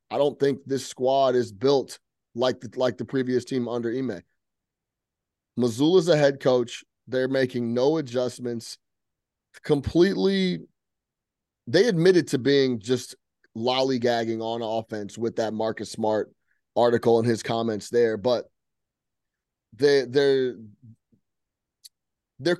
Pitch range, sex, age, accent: 110-130 Hz, male, 30-49, American